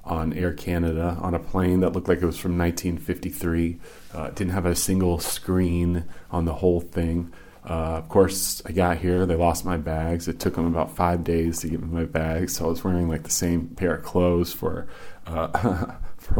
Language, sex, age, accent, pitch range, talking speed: English, male, 30-49, American, 85-95 Hz, 210 wpm